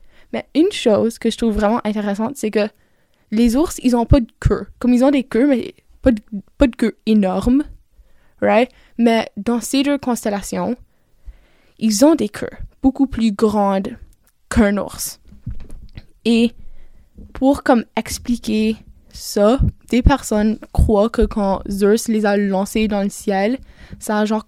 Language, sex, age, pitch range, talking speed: French, female, 10-29, 205-240 Hz, 155 wpm